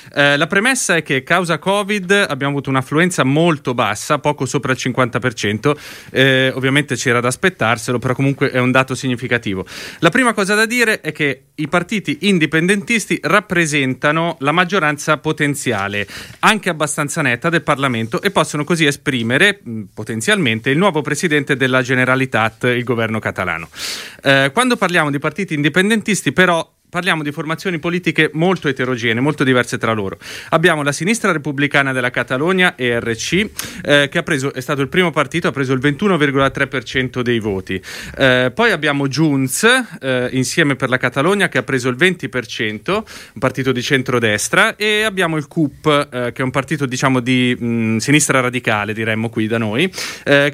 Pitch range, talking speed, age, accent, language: 130-170 Hz, 160 wpm, 30-49, native, Italian